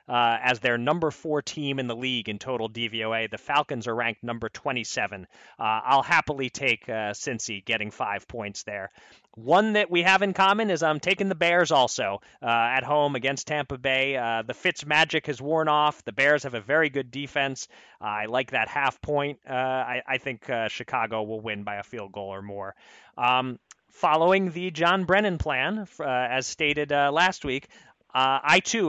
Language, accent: English, American